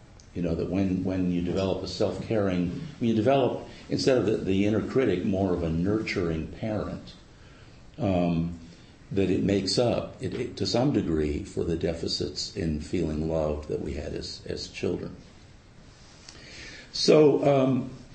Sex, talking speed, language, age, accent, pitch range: male, 160 wpm, English, 50-69, American, 85-115 Hz